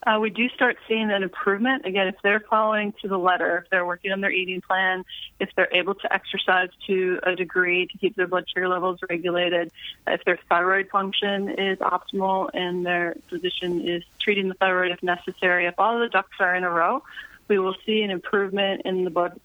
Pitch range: 175-195 Hz